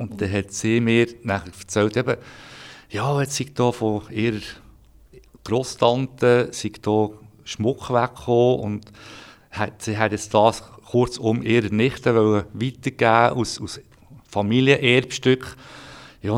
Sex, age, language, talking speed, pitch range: male, 50-69, German, 115 wpm, 100-125 Hz